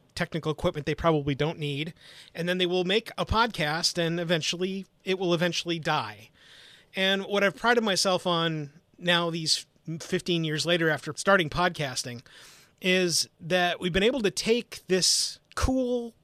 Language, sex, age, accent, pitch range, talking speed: English, male, 30-49, American, 155-195 Hz, 155 wpm